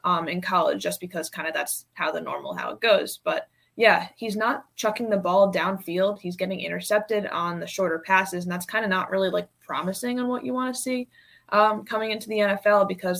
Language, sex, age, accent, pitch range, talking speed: English, female, 20-39, American, 180-205 Hz, 220 wpm